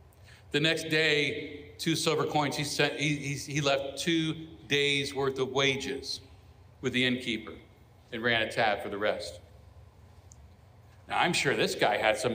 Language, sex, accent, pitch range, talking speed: English, male, American, 105-140 Hz, 165 wpm